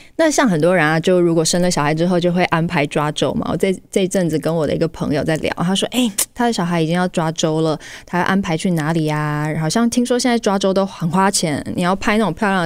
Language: Chinese